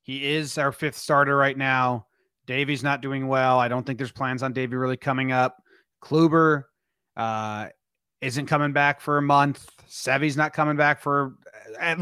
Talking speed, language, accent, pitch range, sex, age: 175 wpm, English, American, 130-155 Hz, male, 30-49